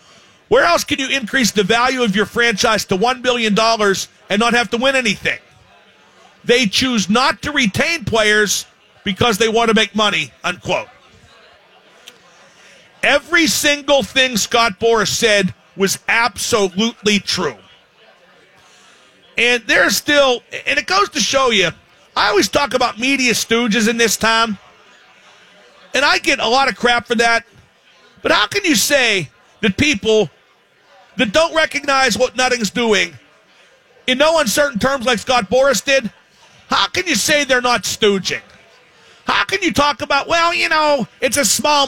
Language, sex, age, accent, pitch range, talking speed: English, male, 50-69, American, 220-285 Hz, 155 wpm